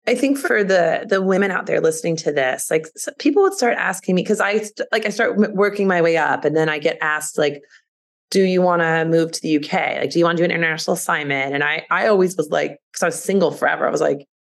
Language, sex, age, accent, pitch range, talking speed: English, female, 20-39, American, 160-225 Hz, 260 wpm